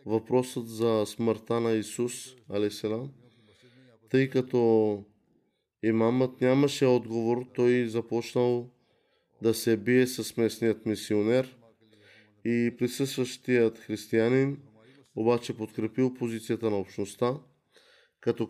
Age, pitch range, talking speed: 20-39, 110-125 Hz, 90 wpm